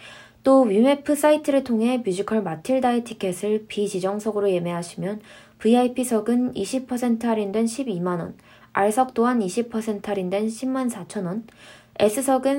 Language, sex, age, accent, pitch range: Korean, female, 20-39, native, 200-245 Hz